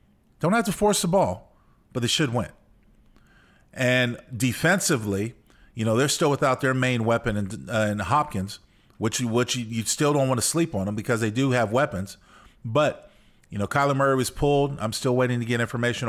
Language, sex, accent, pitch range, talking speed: English, male, American, 110-135 Hz, 195 wpm